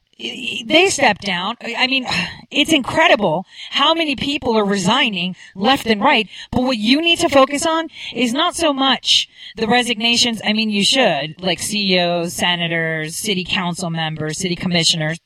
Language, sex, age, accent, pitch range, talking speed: English, female, 40-59, American, 195-260 Hz, 155 wpm